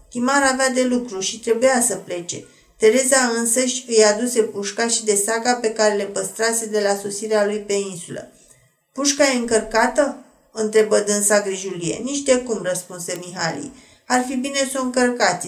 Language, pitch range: Romanian, 210-250 Hz